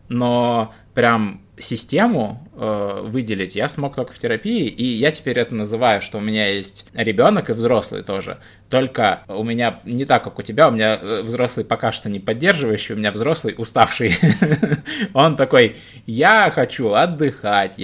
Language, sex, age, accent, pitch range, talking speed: Russian, male, 20-39, native, 110-135 Hz, 160 wpm